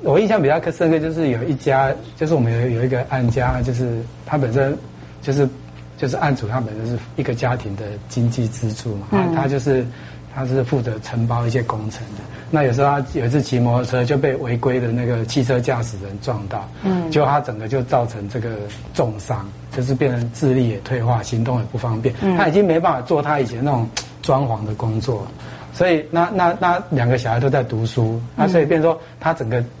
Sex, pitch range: male, 120-155 Hz